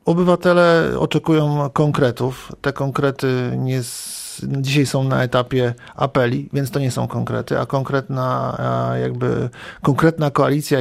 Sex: male